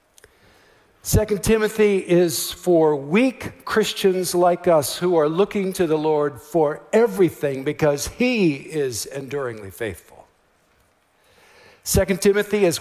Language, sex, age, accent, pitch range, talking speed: English, male, 60-79, American, 140-195 Hz, 110 wpm